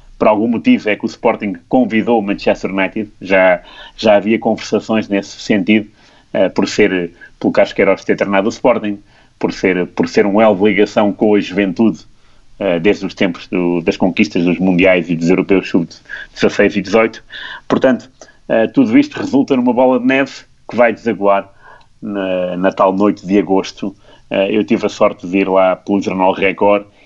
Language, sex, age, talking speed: Portuguese, male, 30-49, 185 wpm